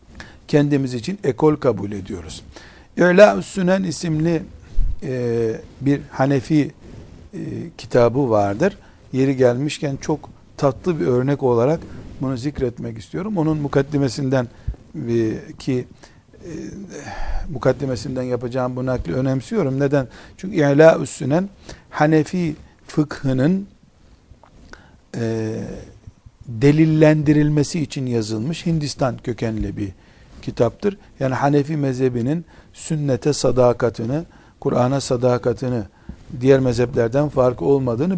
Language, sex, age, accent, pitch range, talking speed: Turkish, male, 60-79, native, 120-150 Hz, 80 wpm